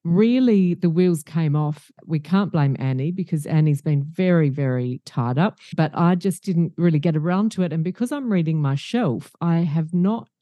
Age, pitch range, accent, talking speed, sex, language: 40-59, 140-175 Hz, Australian, 195 wpm, female, English